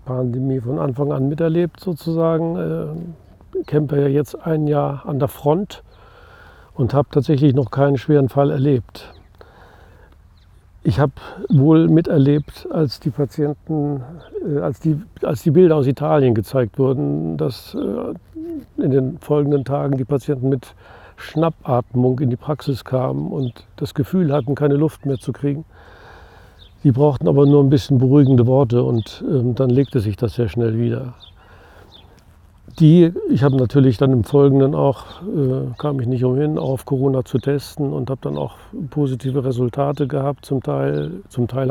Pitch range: 120-145 Hz